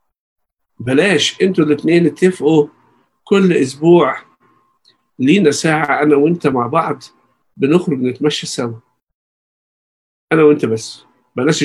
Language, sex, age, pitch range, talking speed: Arabic, male, 50-69, 115-160 Hz, 100 wpm